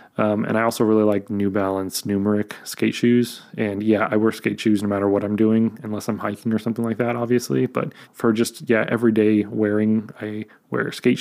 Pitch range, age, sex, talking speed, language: 105-115 Hz, 20-39, male, 215 wpm, English